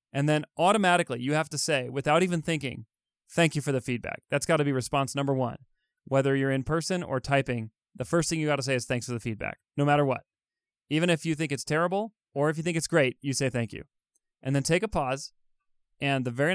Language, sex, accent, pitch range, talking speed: English, male, American, 125-160 Hz, 245 wpm